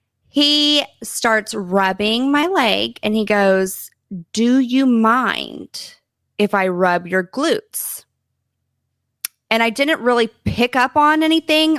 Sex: female